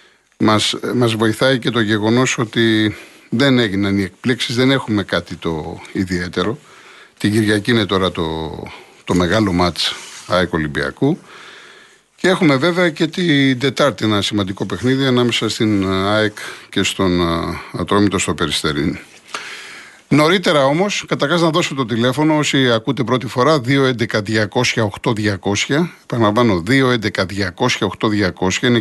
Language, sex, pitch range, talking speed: Greek, male, 95-130 Hz, 120 wpm